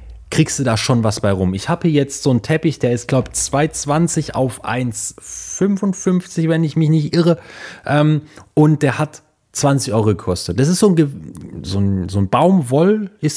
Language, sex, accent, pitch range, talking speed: German, male, German, 115-160 Hz, 195 wpm